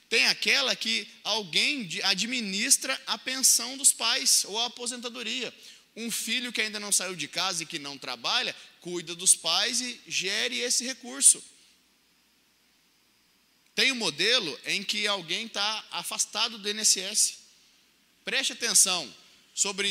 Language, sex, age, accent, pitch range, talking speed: Portuguese, male, 20-39, Brazilian, 185-240 Hz, 135 wpm